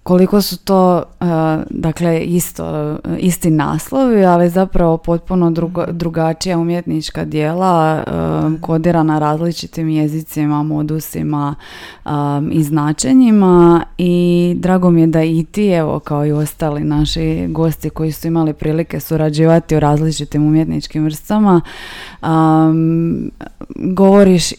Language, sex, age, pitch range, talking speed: Croatian, female, 20-39, 155-180 Hz, 105 wpm